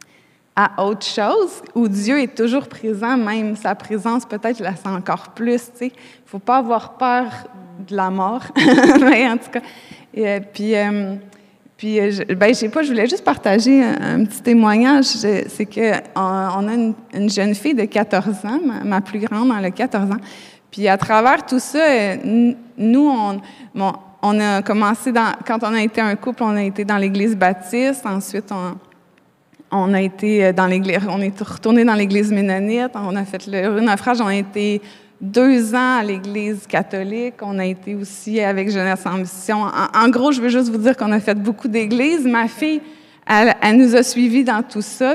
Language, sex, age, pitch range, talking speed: French, female, 20-39, 200-240 Hz, 200 wpm